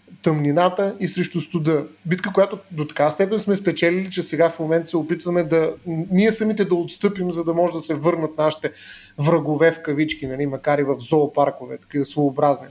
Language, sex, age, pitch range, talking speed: Bulgarian, male, 30-49, 160-195 Hz, 190 wpm